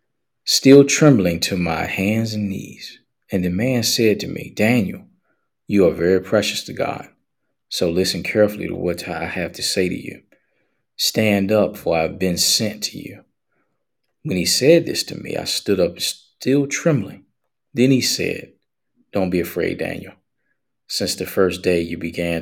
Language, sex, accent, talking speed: English, male, American, 170 wpm